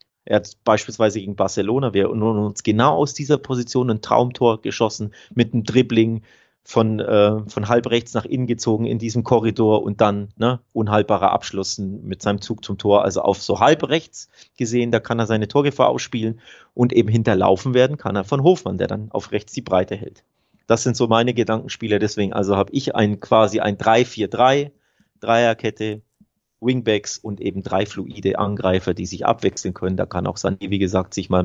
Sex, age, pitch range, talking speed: male, 30-49, 100-120 Hz, 185 wpm